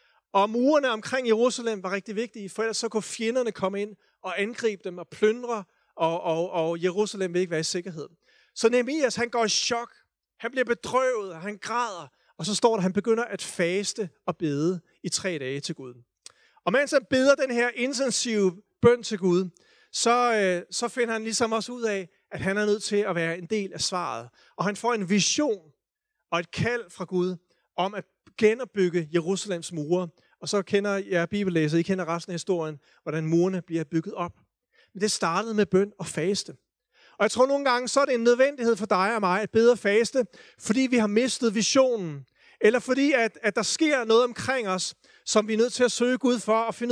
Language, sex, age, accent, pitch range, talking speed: Danish, male, 40-59, native, 180-235 Hz, 210 wpm